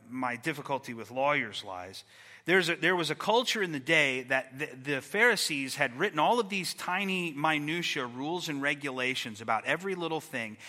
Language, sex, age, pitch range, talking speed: English, male, 30-49, 140-195 Hz, 180 wpm